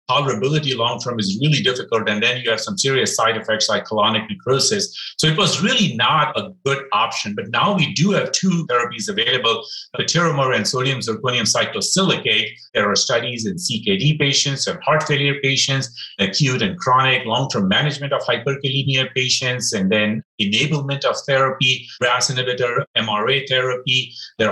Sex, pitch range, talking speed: male, 125-165 Hz, 160 wpm